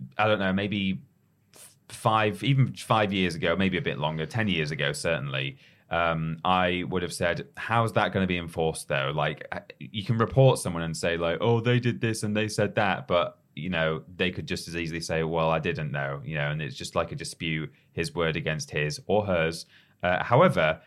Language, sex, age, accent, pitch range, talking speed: English, male, 20-39, British, 80-110 Hz, 215 wpm